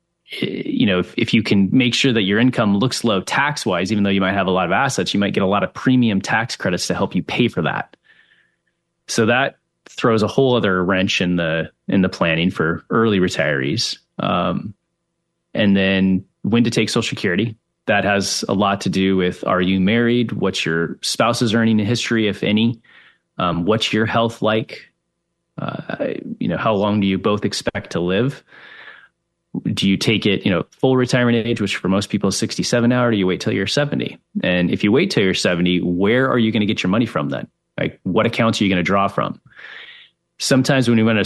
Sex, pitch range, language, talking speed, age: male, 95-120 Hz, English, 215 wpm, 30-49